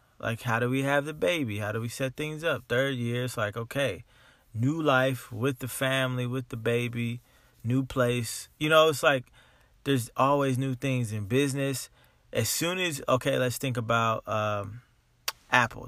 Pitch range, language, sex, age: 115-140 Hz, English, male, 20-39